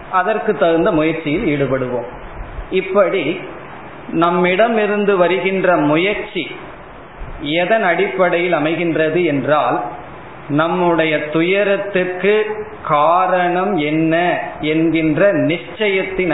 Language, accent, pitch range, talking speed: Tamil, native, 155-195 Hz, 70 wpm